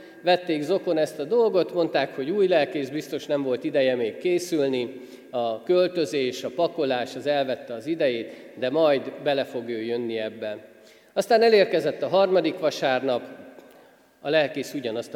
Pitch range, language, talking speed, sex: 125-165 Hz, Hungarian, 150 wpm, male